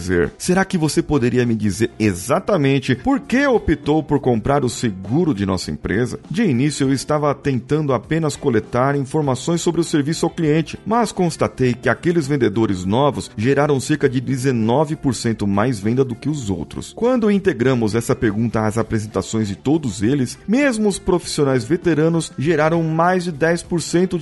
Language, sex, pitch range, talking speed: Portuguese, male, 110-165 Hz, 155 wpm